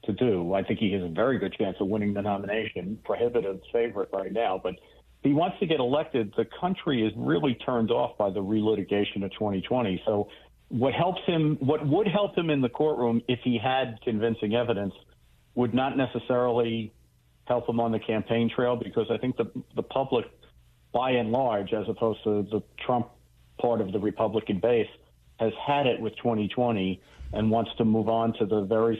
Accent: American